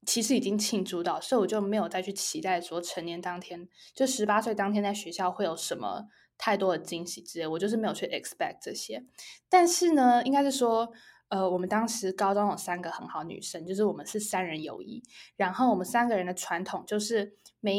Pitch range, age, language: 185-240 Hz, 10-29, Chinese